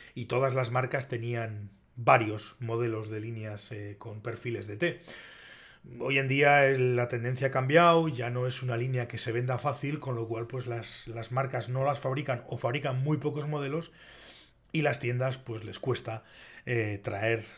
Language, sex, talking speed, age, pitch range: Spanish, male, 180 wpm, 30-49, 115-140 Hz